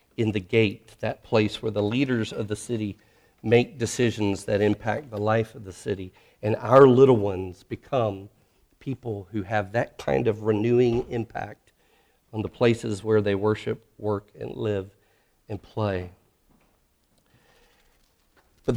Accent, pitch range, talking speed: American, 105-120 Hz, 145 wpm